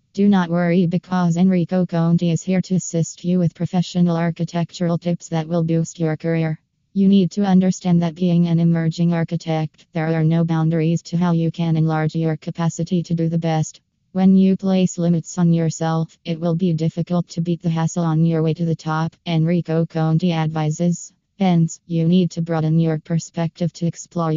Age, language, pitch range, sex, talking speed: 20-39, English, 165-180 Hz, female, 185 wpm